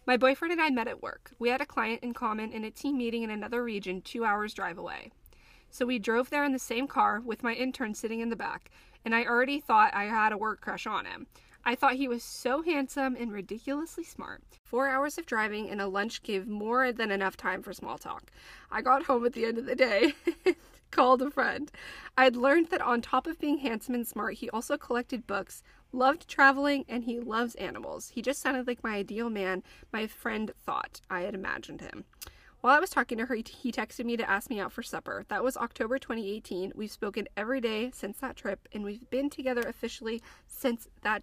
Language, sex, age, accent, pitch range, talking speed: English, female, 20-39, American, 220-265 Hz, 225 wpm